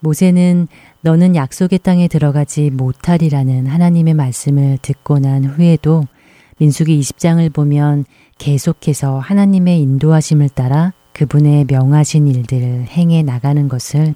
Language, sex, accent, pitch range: Korean, female, native, 135-160 Hz